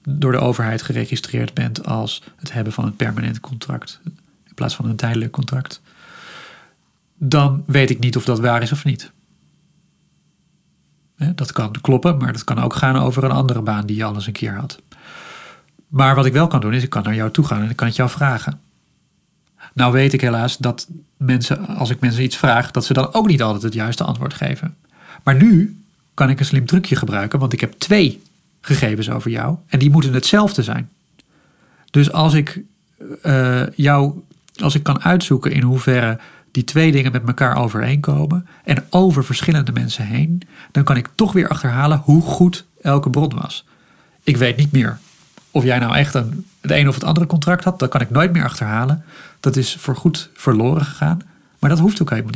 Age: 40-59